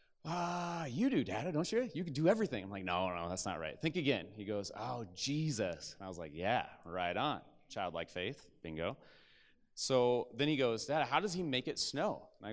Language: English